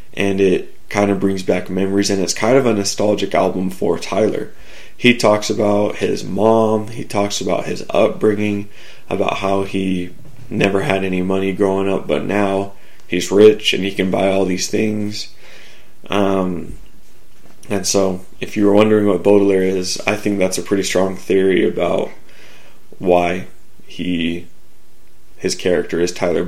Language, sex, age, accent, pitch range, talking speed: English, male, 20-39, American, 95-105 Hz, 160 wpm